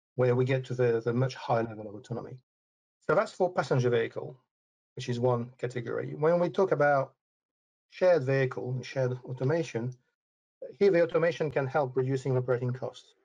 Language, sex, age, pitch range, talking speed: English, male, 50-69, 125-145 Hz, 170 wpm